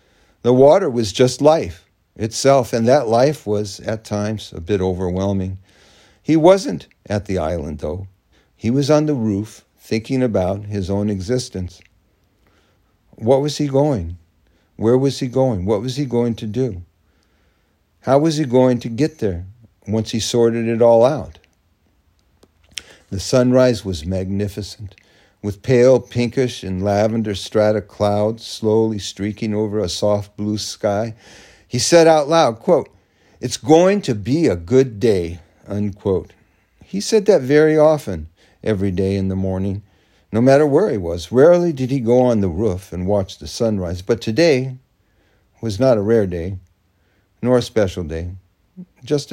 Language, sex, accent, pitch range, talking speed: English, male, American, 95-125 Hz, 155 wpm